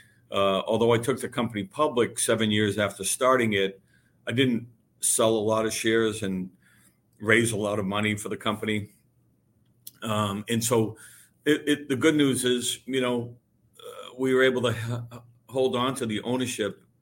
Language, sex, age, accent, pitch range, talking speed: English, male, 50-69, American, 100-120 Hz, 175 wpm